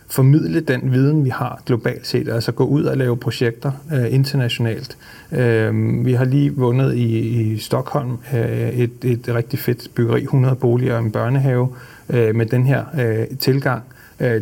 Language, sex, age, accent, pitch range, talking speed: Danish, male, 30-49, native, 115-140 Hz, 180 wpm